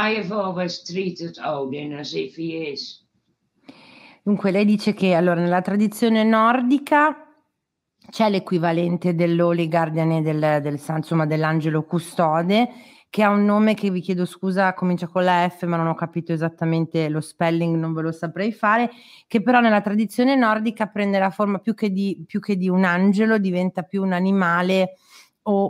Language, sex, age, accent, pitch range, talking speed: Italian, female, 30-49, native, 175-215 Hz, 170 wpm